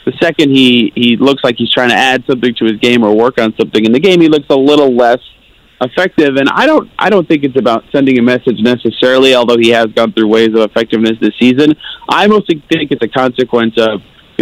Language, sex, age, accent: English, male, 30-49, American